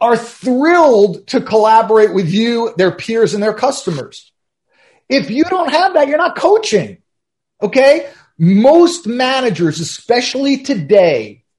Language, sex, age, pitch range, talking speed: English, male, 40-59, 180-240 Hz, 125 wpm